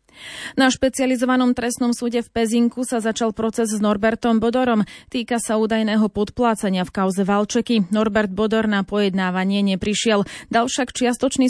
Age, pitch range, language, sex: 30-49, 200-235 Hz, Slovak, female